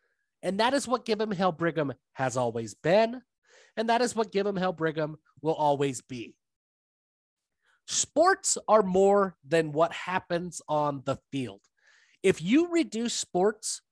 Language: English